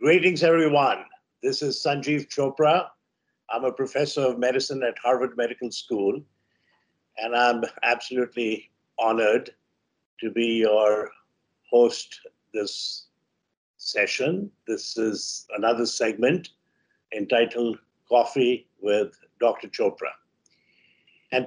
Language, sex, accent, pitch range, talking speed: English, male, Indian, 115-150 Hz, 100 wpm